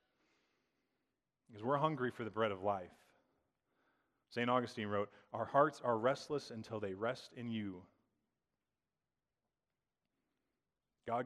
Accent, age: American, 30-49